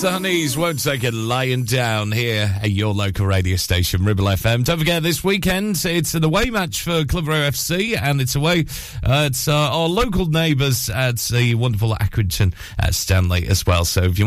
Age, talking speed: 40-59, 190 wpm